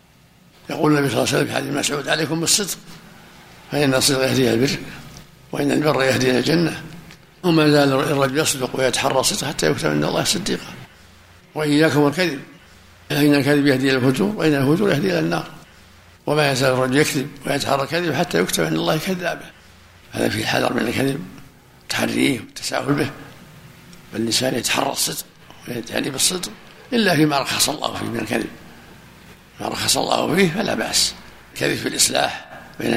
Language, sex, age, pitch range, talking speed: Arabic, male, 60-79, 130-160 Hz, 155 wpm